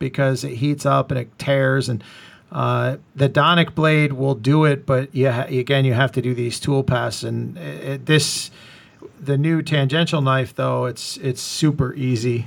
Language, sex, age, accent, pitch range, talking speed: English, male, 40-59, American, 125-140 Hz, 180 wpm